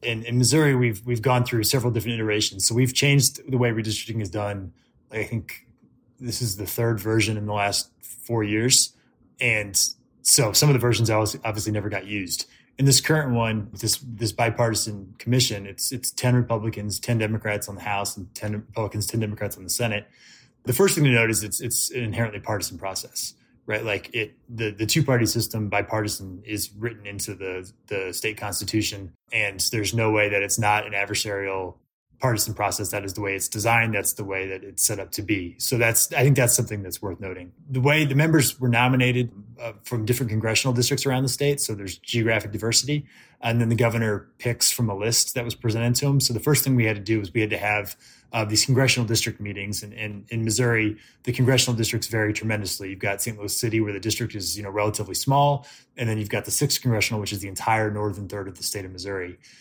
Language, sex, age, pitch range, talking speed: English, male, 20-39, 105-120 Hz, 220 wpm